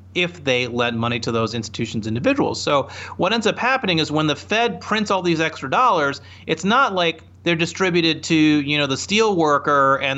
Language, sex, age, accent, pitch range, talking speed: English, male, 30-49, American, 125-180 Hz, 200 wpm